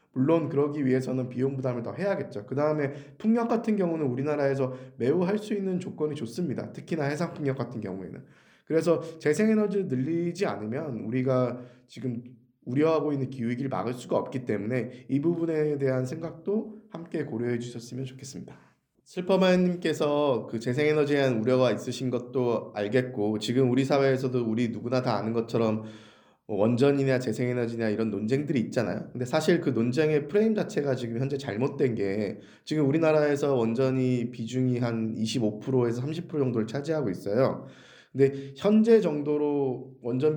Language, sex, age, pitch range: Korean, male, 20-39, 120-150 Hz